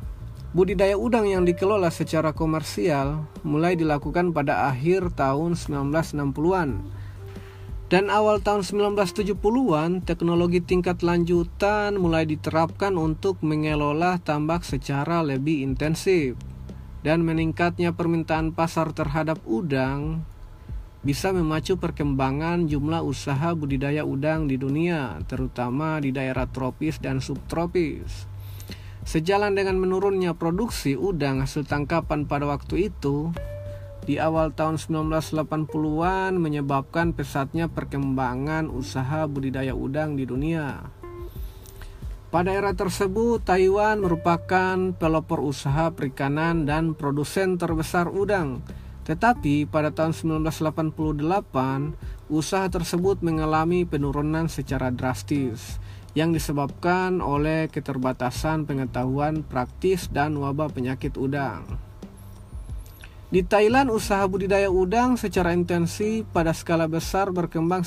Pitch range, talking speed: 135-175 Hz, 100 wpm